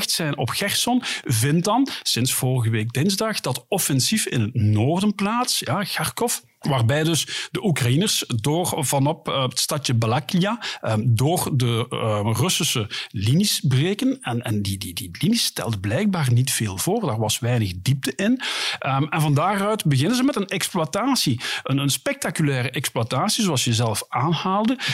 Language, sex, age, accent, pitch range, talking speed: Dutch, male, 50-69, Dutch, 120-185 Hz, 155 wpm